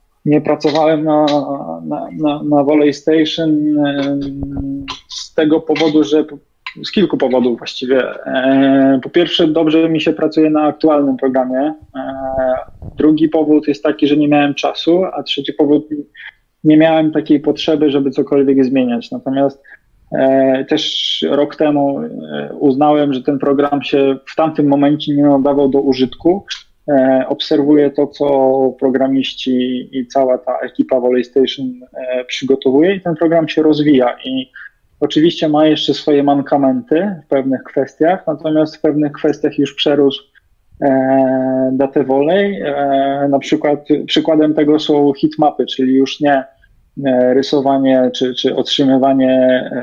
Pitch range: 130-150 Hz